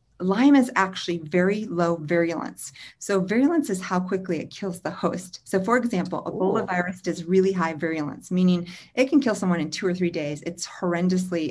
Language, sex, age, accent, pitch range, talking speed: English, female, 40-59, American, 160-185 Hz, 190 wpm